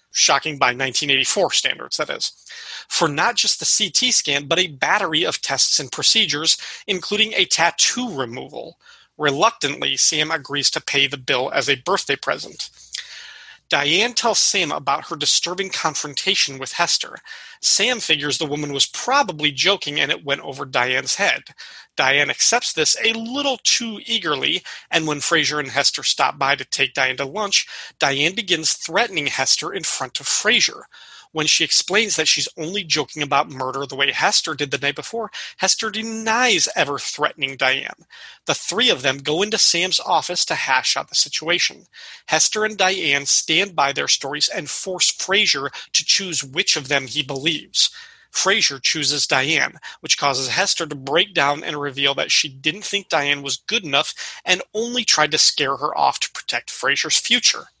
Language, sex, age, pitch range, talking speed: English, male, 40-59, 140-195 Hz, 170 wpm